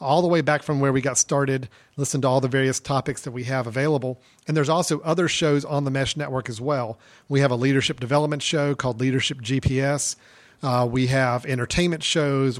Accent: American